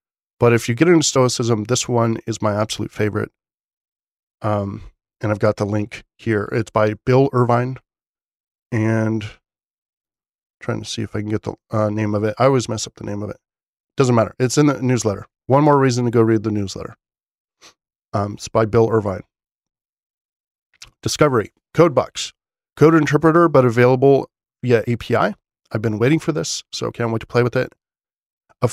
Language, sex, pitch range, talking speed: English, male, 110-130 Hz, 180 wpm